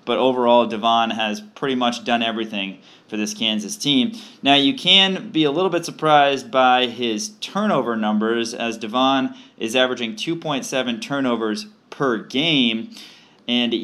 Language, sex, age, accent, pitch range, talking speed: English, male, 20-39, American, 115-140 Hz, 145 wpm